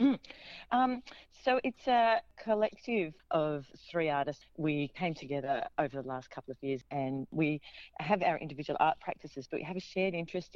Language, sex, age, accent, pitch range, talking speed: English, female, 40-59, Australian, 140-180 Hz, 170 wpm